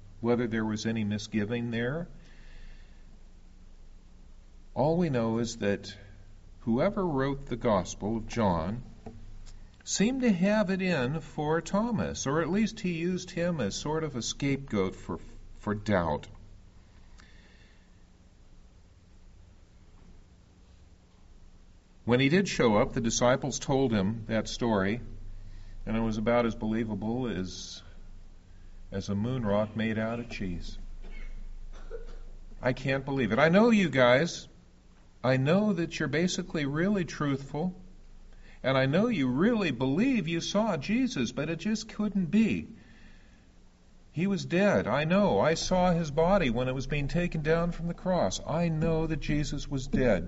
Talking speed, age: 140 wpm, 50-69